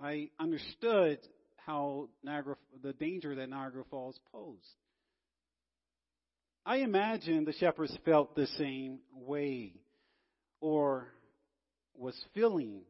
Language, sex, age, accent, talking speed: English, male, 40-59, American, 100 wpm